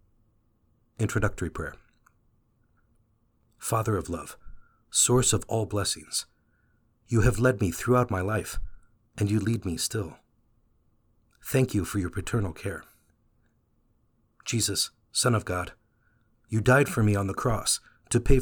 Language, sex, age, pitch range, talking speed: English, male, 50-69, 100-115 Hz, 130 wpm